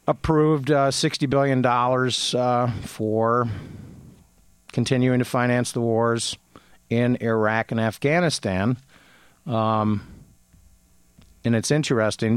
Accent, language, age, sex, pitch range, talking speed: American, English, 50-69, male, 110-130 Hz, 90 wpm